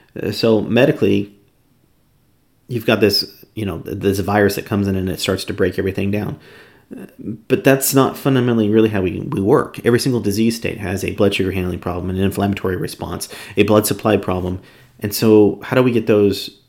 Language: English